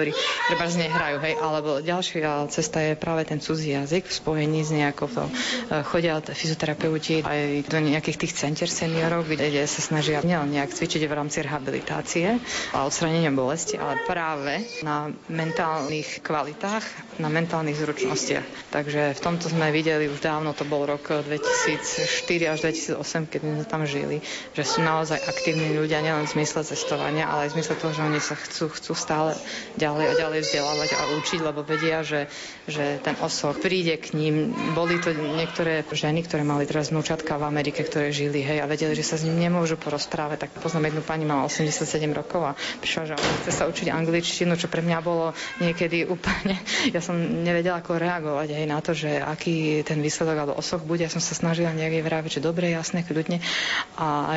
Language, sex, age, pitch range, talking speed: Slovak, female, 30-49, 150-165 Hz, 180 wpm